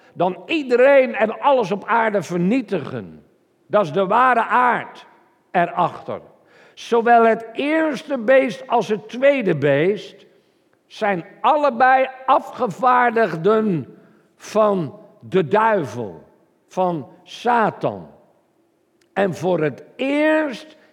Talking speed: 95 wpm